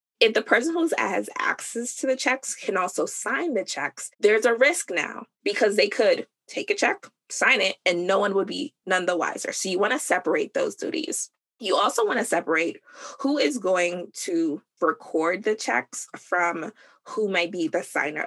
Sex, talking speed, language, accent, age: female, 195 wpm, English, American, 20-39